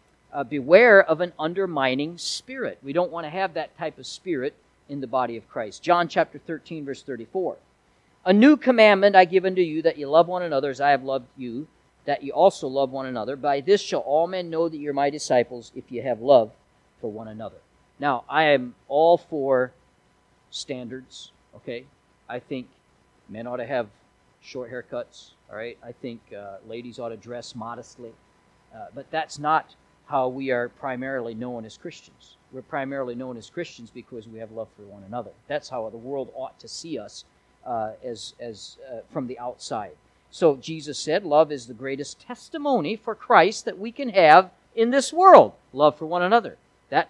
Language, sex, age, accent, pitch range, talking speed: English, male, 40-59, American, 130-185 Hz, 190 wpm